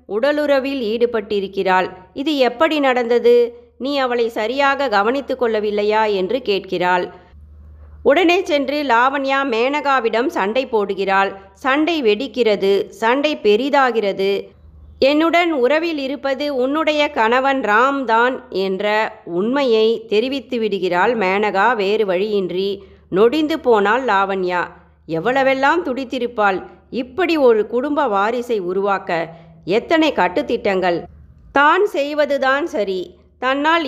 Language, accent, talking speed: Tamil, native, 85 wpm